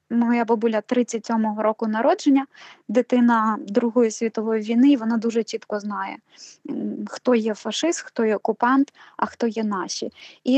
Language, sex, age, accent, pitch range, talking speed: Ukrainian, female, 20-39, native, 220-260 Hz, 140 wpm